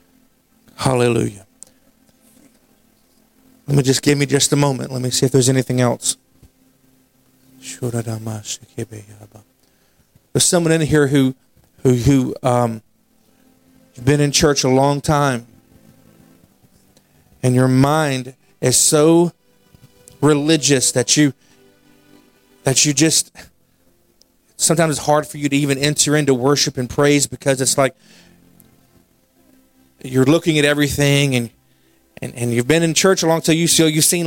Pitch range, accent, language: 130-160 Hz, American, English